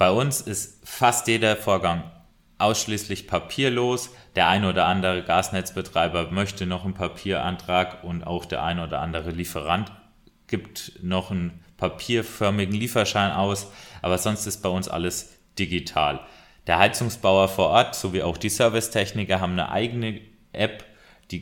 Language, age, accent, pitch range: German, 30-49, German, 90-105 Hz